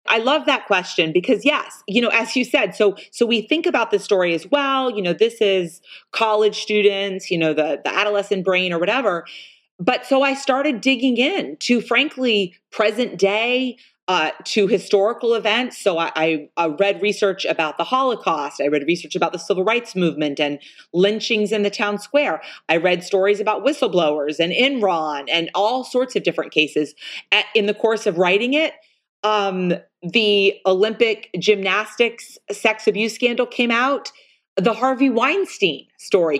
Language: English